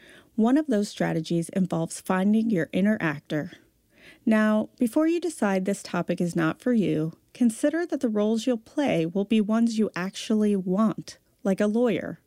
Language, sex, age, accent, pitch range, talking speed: English, female, 40-59, American, 175-245 Hz, 165 wpm